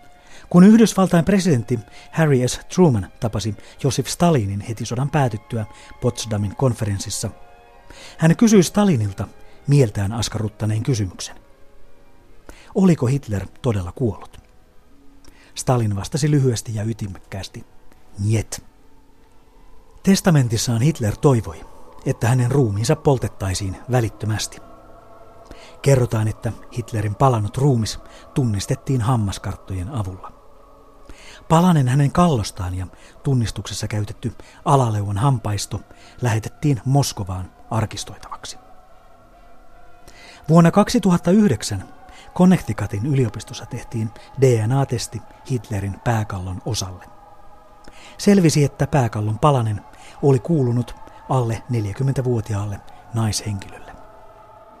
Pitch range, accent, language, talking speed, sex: 105-145 Hz, native, Finnish, 80 wpm, male